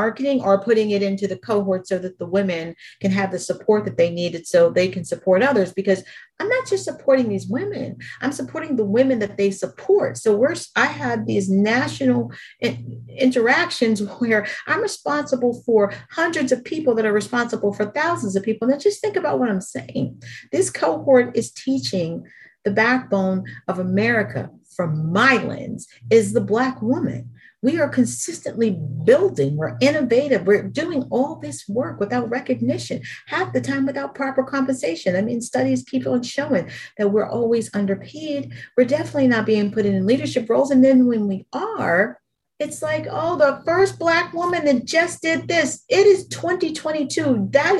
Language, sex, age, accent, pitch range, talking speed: English, female, 40-59, American, 195-275 Hz, 170 wpm